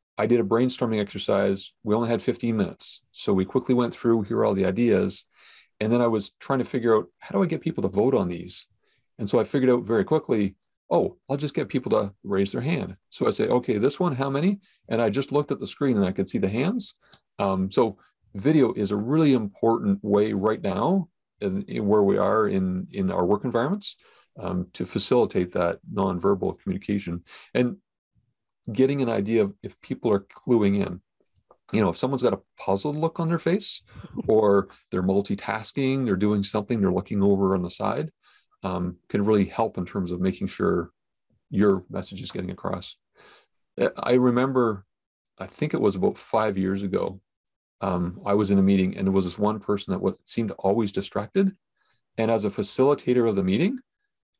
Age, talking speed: 40-59, 200 wpm